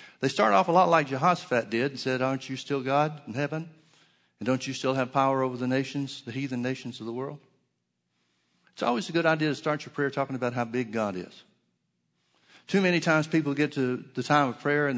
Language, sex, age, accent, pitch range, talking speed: English, male, 60-79, American, 125-165 Hz, 230 wpm